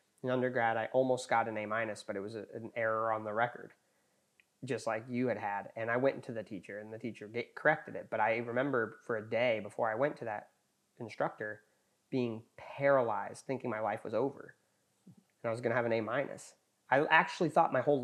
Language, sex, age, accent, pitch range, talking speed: English, male, 30-49, American, 115-135 Hz, 215 wpm